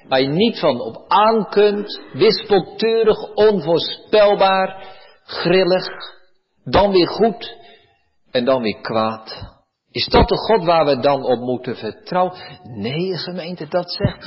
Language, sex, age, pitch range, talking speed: Dutch, male, 50-69, 170-220 Hz, 125 wpm